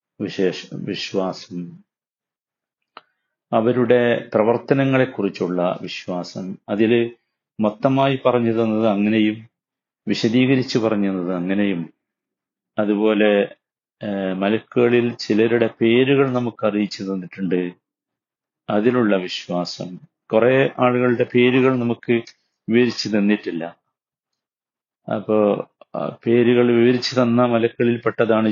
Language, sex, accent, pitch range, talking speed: Malayalam, male, native, 100-120 Hz, 65 wpm